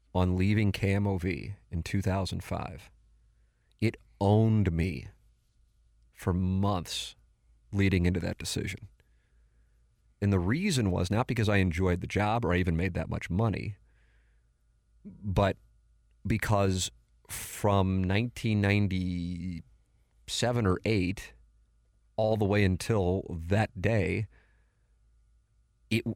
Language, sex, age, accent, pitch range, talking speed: English, male, 30-49, American, 85-105 Hz, 100 wpm